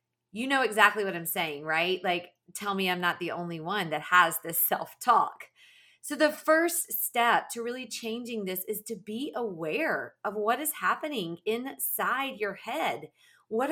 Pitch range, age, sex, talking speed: 205-290 Hz, 30-49, female, 170 wpm